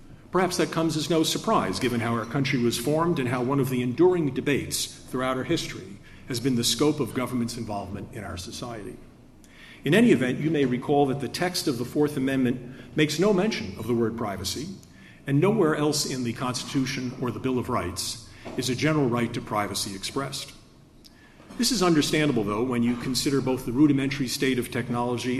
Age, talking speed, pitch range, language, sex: 50-69, 195 wpm, 120-155 Hz, English, male